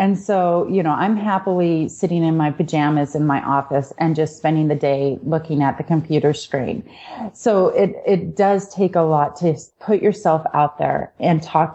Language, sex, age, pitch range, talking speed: English, female, 30-49, 155-185 Hz, 190 wpm